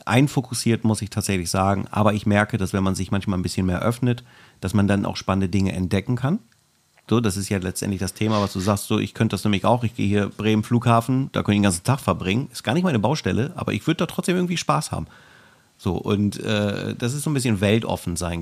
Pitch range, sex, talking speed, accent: 100-125 Hz, male, 250 wpm, German